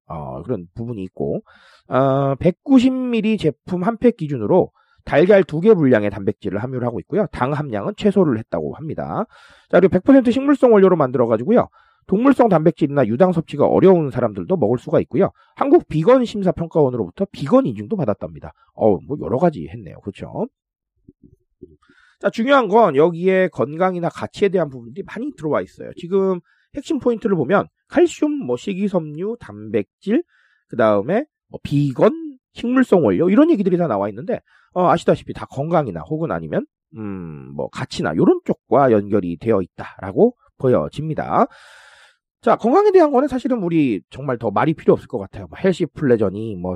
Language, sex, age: Korean, male, 40-59